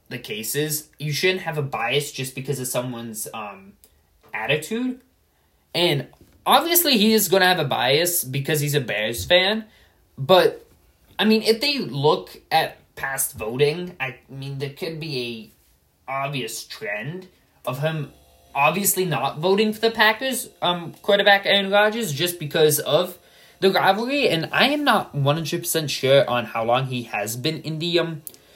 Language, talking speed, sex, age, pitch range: English, 160 wpm, male, 20-39, 140-205 Hz